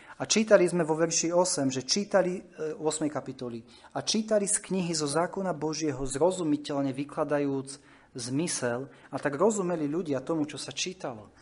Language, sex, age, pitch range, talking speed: Slovak, male, 30-49, 130-170 Hz, 150 wpm